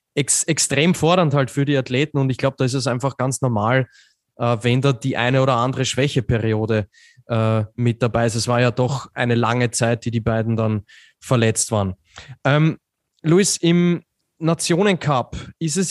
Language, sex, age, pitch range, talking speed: German, male, 20-39, 125-165 Hz, 175 wpm